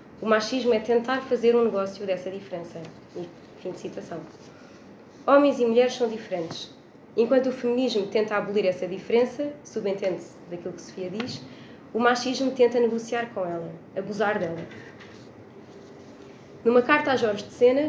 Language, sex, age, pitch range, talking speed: Portuguese, female, 20-39, 200-245 Hz, 150 wpm